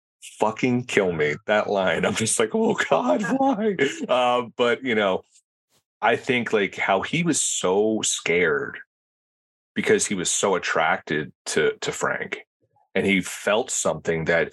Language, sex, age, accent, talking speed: English, male, 30-49, American, 150 wpm